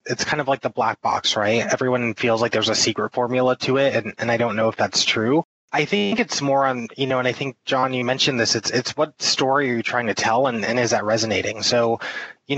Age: 20-39